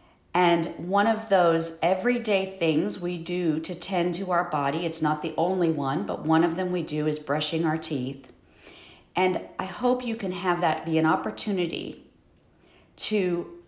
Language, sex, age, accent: English, female, 50-69, American